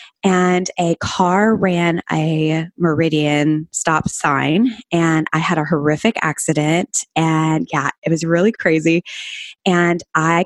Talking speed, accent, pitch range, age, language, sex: 125 wpm, American, 160-190 Hz, 20-39, English, female